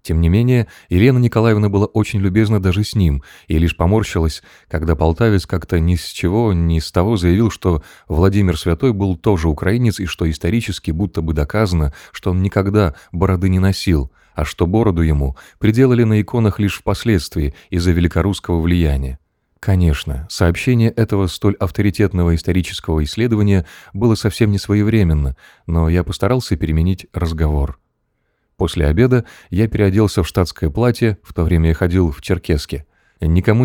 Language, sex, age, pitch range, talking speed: Ukrainian, male, 20-39, 85-105 Hz, 150 wpm